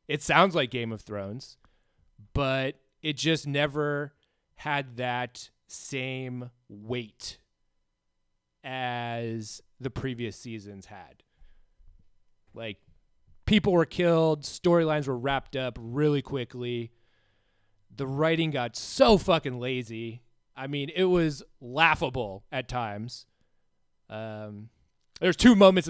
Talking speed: 105 wpm